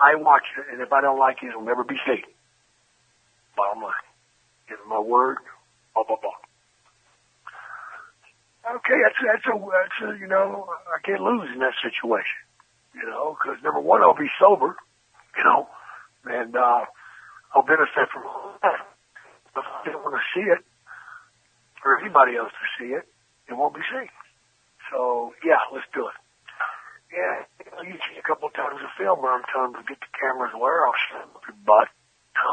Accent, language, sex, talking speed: American, English, male, 185 wpm